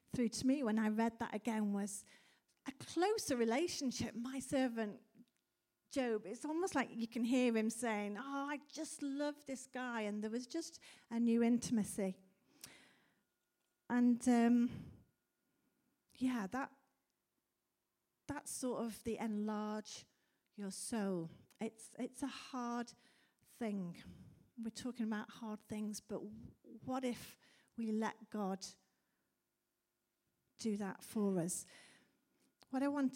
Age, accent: 40-59, British